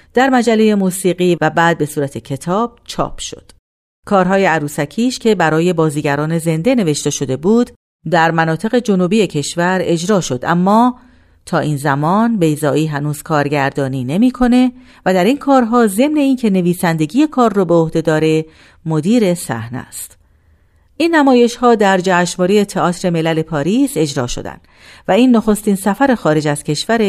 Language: Persian